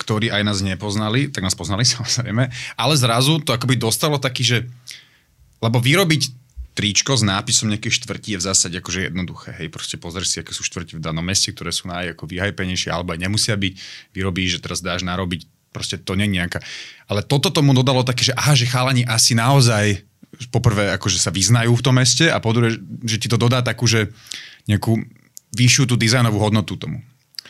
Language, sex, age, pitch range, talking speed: Slovak, male, 30-49, 95-125 Hz, 190 wpm